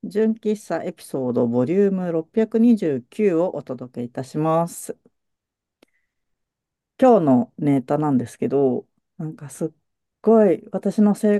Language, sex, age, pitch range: Japanese, female, 50-69, 130-210 Hz